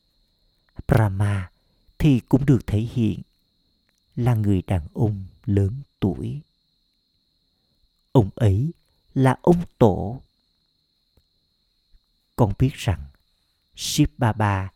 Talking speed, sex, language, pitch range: 85 wpm, male, Vietnamese, 90-130 Hz